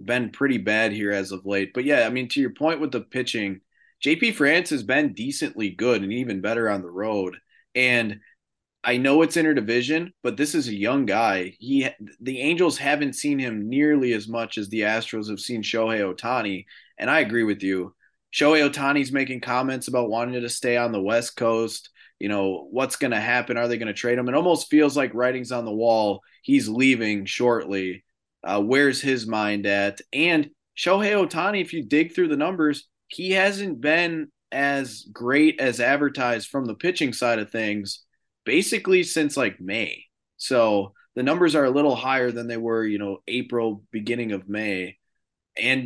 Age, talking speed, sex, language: 20-39, 190 wpm, male, English